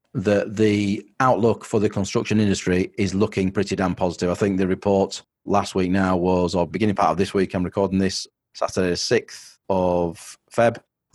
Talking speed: 185 wpm